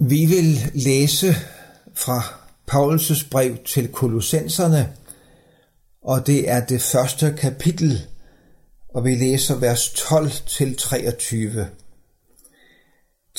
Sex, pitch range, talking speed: male, 125-165 Hz, 85 wpm